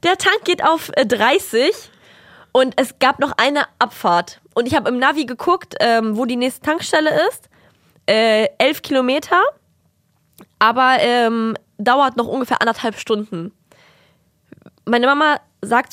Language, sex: German, female